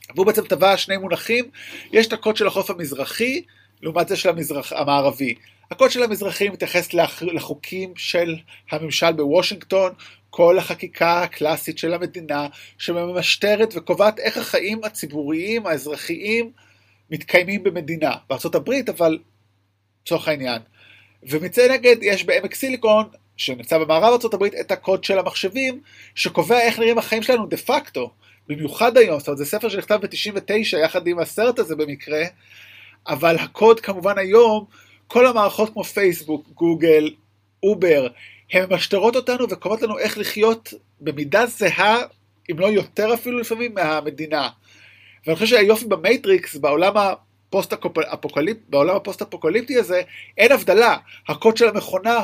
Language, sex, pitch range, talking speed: Hebrew, male, 155-215 Hz, 130 wpm